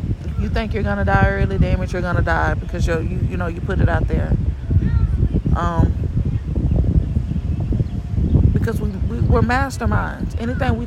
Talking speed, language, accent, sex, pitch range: 150 wpm, English, American, female, 85-105 Hz